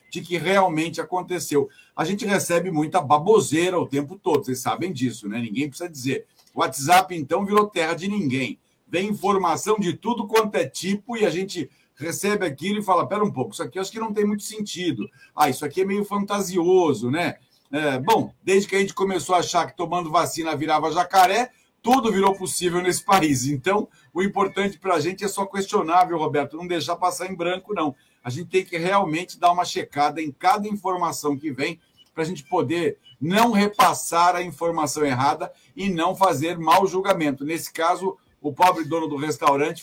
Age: 60-79